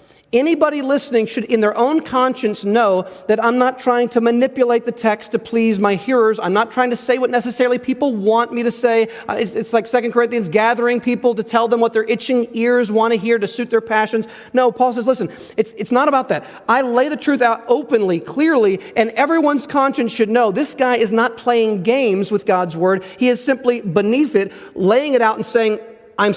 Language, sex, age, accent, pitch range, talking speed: English, male, 40-59, American, 195-245 Hz, 210 wpm